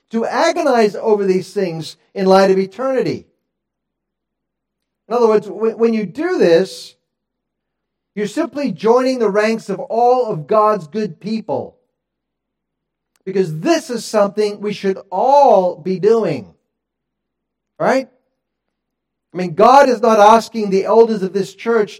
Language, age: English, 50-69